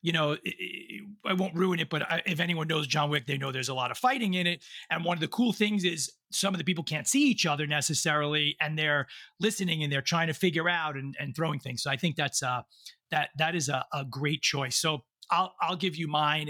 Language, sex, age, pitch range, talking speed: English, male, 40-59, 145-175 Hz, 245 wpm